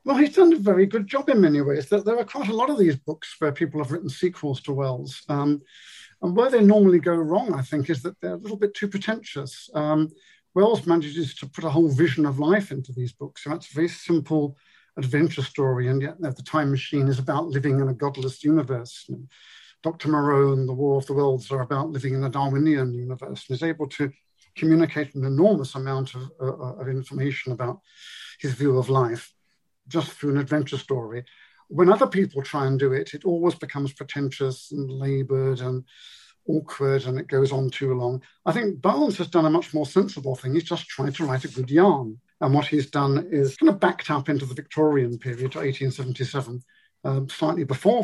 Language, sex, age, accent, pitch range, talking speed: English, male, 50-69, British, 135-160 Hz, 210 wpm